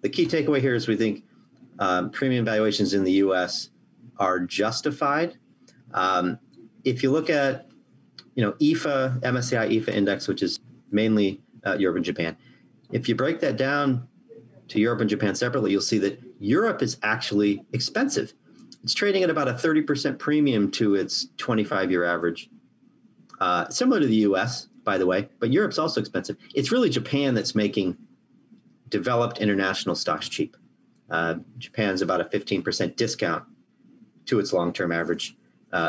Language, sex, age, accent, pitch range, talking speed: English, male, 40-59, American, 100-150 Hz, 155 wpm